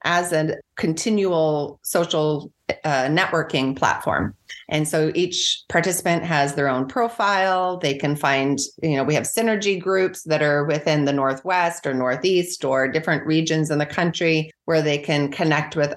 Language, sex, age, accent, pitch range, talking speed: English, female, 30-49, American, 140-175 Hz, 160 wpm